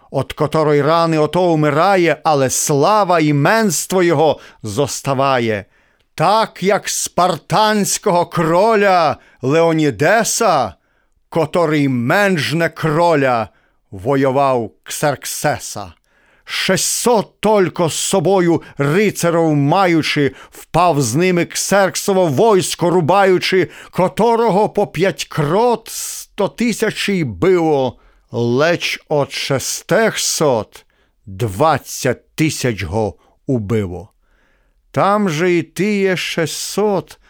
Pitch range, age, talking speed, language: 130-185 Hz, 50-69, 85 wpm, Ukrainian